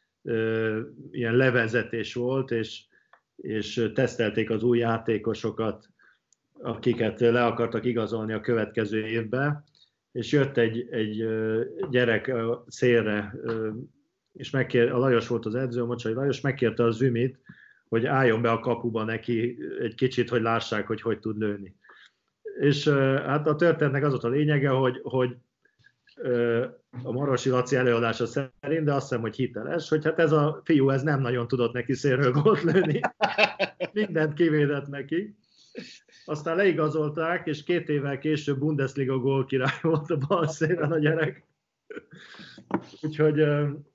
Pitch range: 120-150 Hz